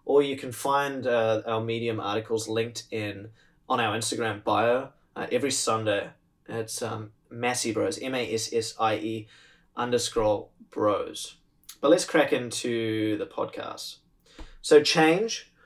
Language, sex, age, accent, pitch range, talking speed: English, male, 20-39, Australian, 115-160 Hz, 125 wpm